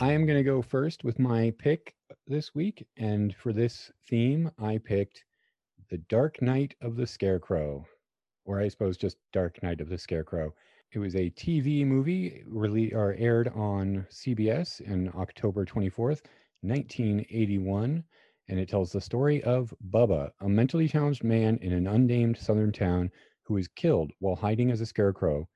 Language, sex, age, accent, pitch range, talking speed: English, male, 40-59, American, 100-125 Hz, 165 wpm